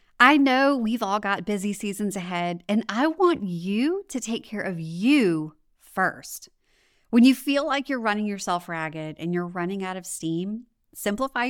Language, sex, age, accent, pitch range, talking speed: English, female, 30-49, American, 175-245 Hz, 170 wpm